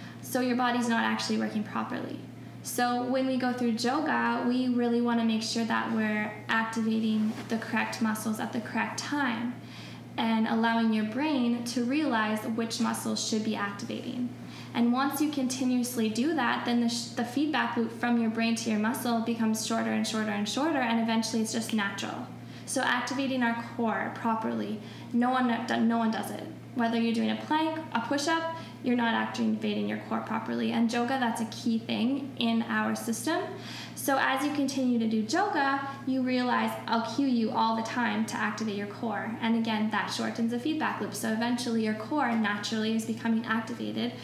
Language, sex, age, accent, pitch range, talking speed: English, female, 10-29, American, 220-245 Hz, 185 wpm